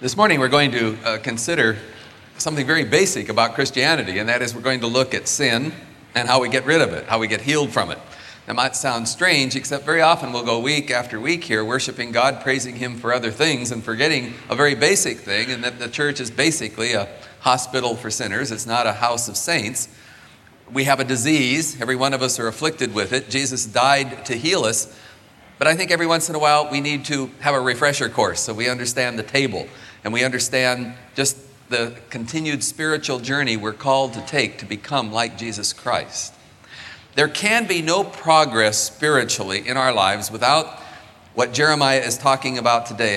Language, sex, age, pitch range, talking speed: English, male, 40-59, 115-145 Hz, 205 wpm